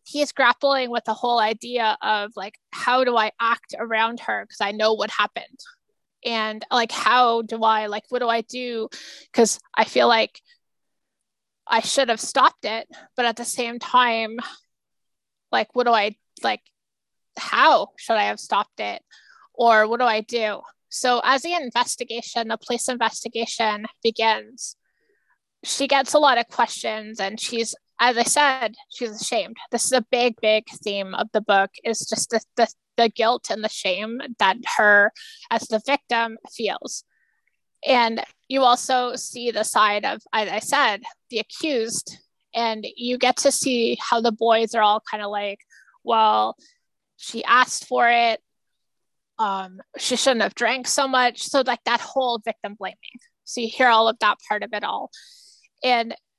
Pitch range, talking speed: 220-250 Hz, 170 wpm